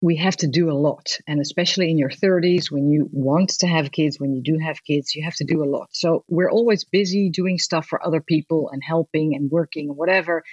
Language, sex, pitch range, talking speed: English, female, 165-215 Hz, 245 wpm